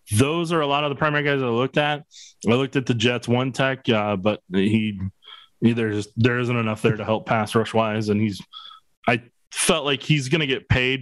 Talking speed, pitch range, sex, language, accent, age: 220 wpm, 110-135 Hz, male, English, American, 20-39